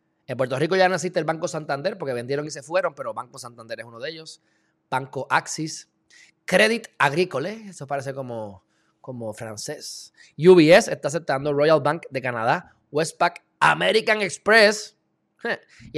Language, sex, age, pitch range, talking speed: Spanish, male, 20-39, 135-175 Hz, 150 wpm